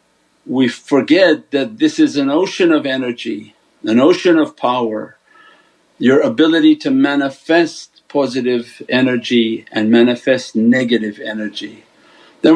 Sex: male